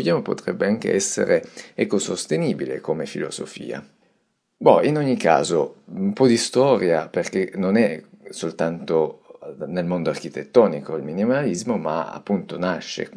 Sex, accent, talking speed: male, native, 120 wpm